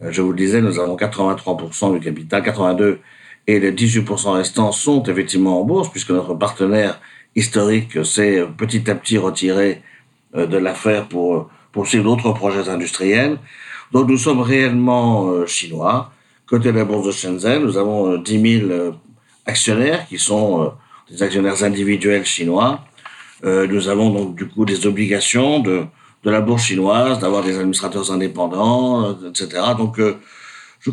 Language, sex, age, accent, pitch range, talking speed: French, male, 50-69, French, 95-120 Hz, 150 wpm